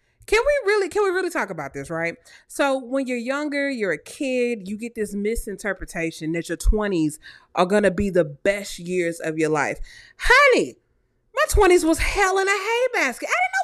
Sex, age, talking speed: female, 30-49, 200 wpm